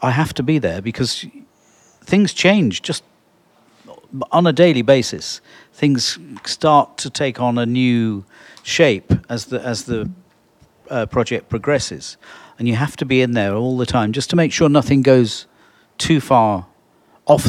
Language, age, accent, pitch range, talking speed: English, 50-69, British, 120-155 Hz, 160 wpm